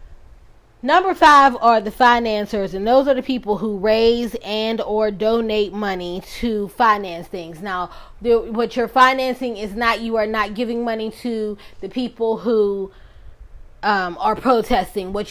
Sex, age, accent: female, 20-39, American